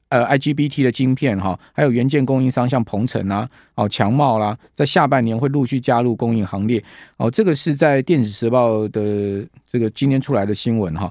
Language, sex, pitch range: Chinese, male, 115-150 Hz